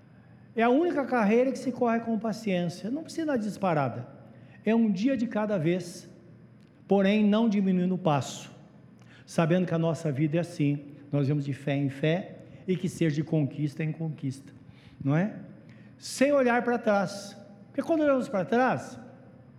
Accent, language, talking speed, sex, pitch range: Brazilian, Portuguese, 170 wpm, male, 170-240 Hz